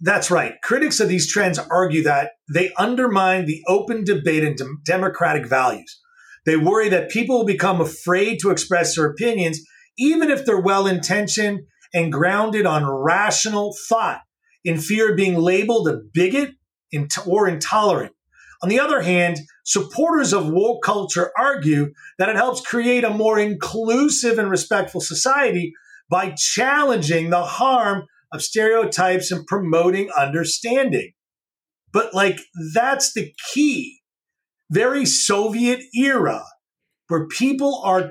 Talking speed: 135 wpm